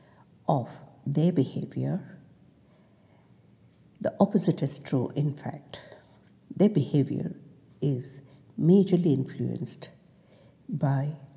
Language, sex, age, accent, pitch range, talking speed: English, female, 60-79, Indian, 140-185 Hz, 80 wpm